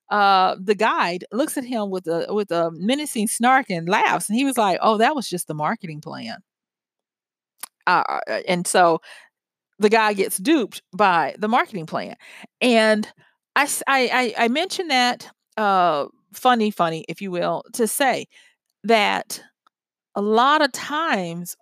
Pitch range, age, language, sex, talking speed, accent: 195-245 Hz, 40-59, English, female, 155 wpm, American